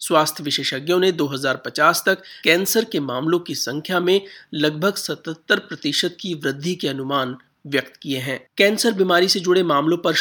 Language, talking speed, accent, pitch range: Hindi, 160 wpm, native, 145-180 Hz